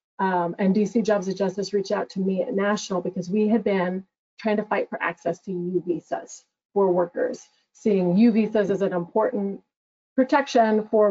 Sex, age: female, 30-49